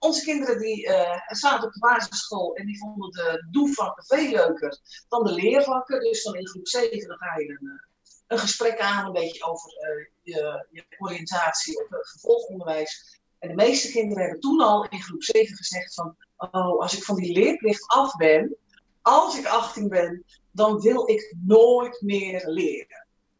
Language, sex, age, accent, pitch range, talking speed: Dutch, female, 40-59, Dutch, 180-240 Hz, 175 wpm